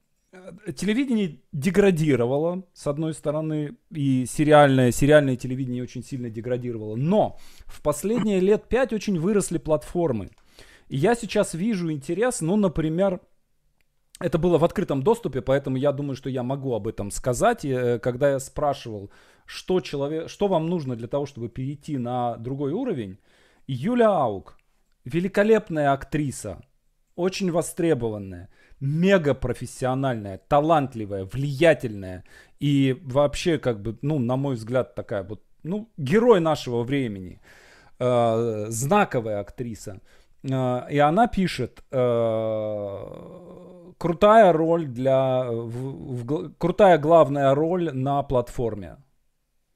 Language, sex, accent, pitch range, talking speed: Russian, male, native, 125-170 Hz, 115 wpm